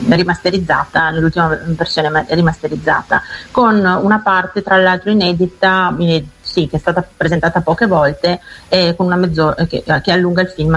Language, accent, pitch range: Italian, native, 165-190 Hz